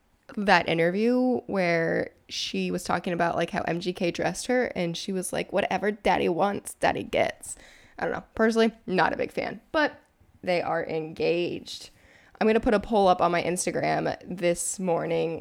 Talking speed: 170 wpm